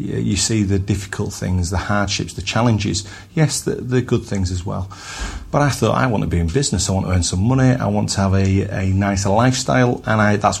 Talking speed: 240 wpm